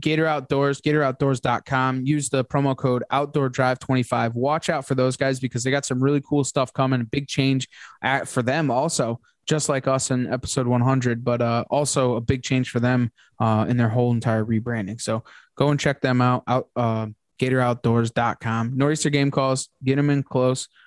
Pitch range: 115-135 Hz